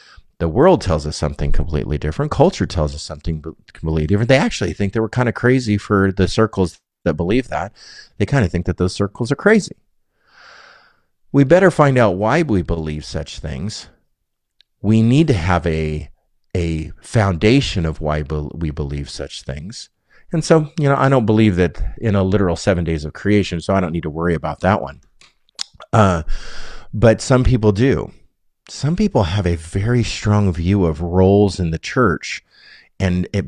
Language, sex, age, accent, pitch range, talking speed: English, male, 50-69, American, 80-105 Hz, 180 wpm